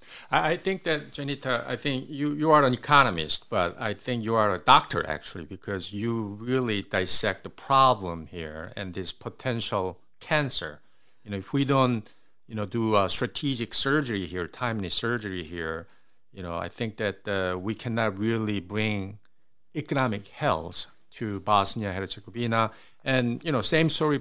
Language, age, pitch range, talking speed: Hungarian, 60-79, 95-125 Hz, 160 wpm